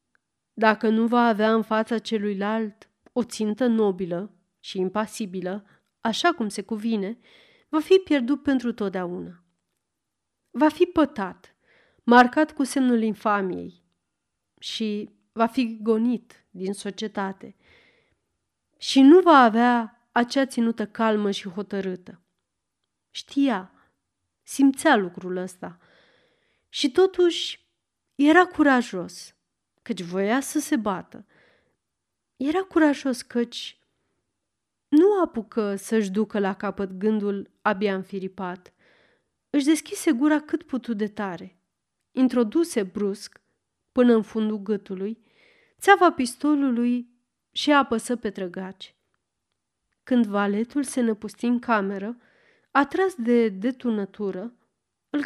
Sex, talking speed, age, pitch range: female, 105 wpm, 30-49, 200-275 Hz